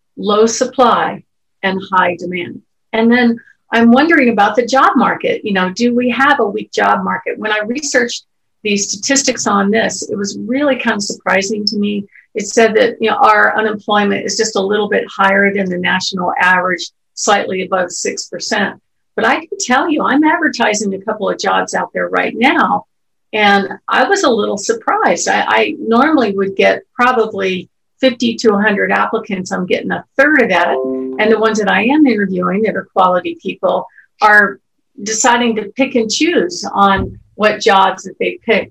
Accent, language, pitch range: American, English, 195-245 Hz